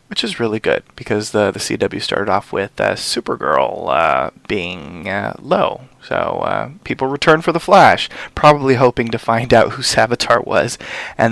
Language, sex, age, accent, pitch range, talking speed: English, male, 20-39, American, 115-150 Hz, 175 wpm